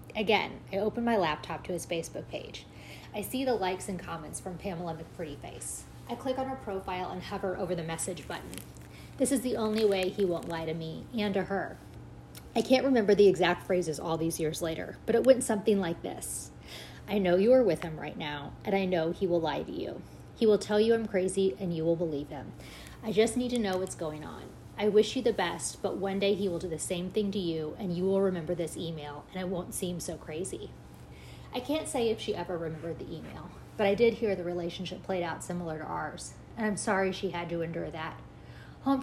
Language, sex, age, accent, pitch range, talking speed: English, female, 30-49, American, 165-215 Hz, 230 wpm